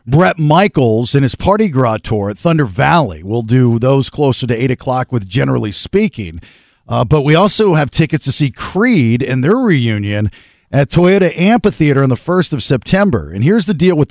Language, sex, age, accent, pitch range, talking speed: English, male, 50-69, American, 125-160 Hz, 190 wpm